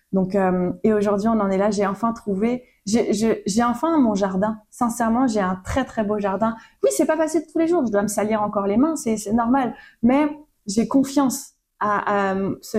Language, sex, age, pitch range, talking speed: French, female, 20-39, 190-230 Hz, 220 wpm